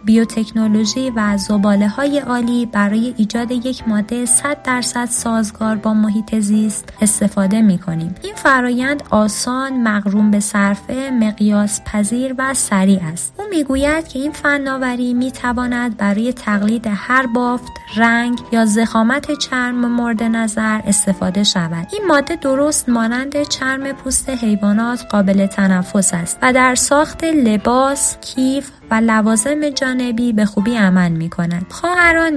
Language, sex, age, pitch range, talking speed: Persian, female, 20-39, 205-255 Hz, 130 wpm